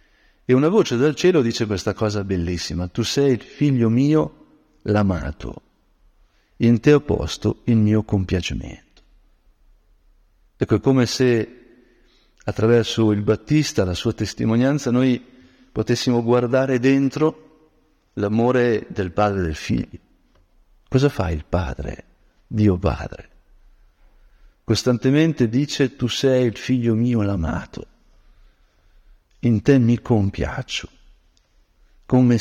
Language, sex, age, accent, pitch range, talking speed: Italian, male, 50-69, native, 95-130 Hz, 115 wpm